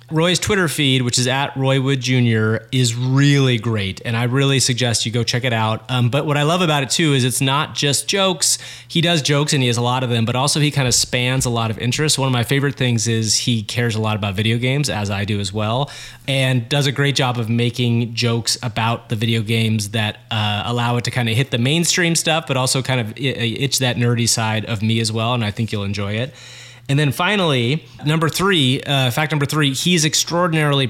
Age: 30-49